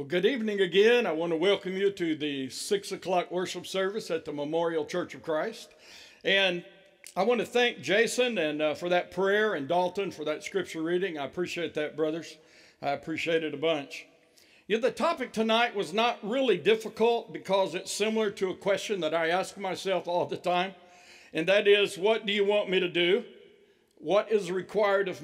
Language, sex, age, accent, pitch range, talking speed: English, male, 60-79, American, 180-225 Hz, 195 wpm